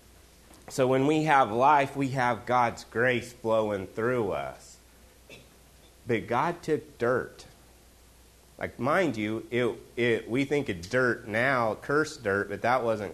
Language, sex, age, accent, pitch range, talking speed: English, male, 30-49, American, 85-120 Hz, 140 wpm